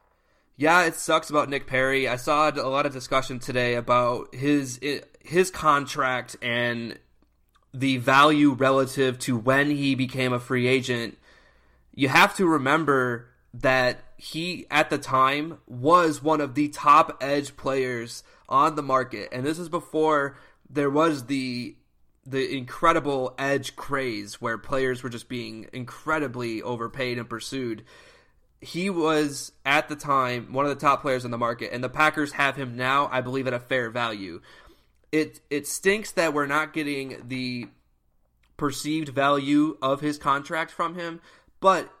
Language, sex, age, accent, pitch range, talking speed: English, male, 20-39, American, 125-150 Hz, 155 wpm